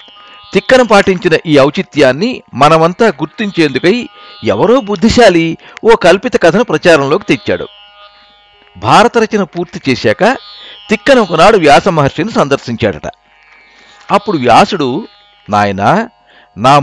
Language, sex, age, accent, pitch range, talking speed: Telugu, male, 50-69, native, 140-205 Hz, 85 wpm